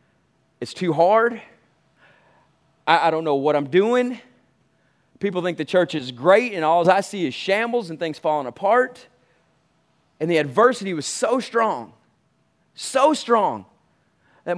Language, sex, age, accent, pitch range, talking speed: English, male, 30-49, American, 155-200 Hz, 145 wpm